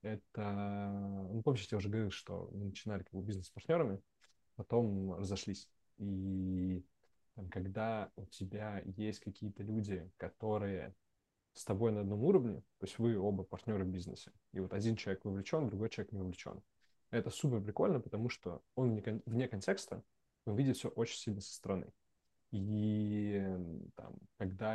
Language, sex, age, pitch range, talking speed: Russian, male, 20-39, 95-110 Hz, 155 wpm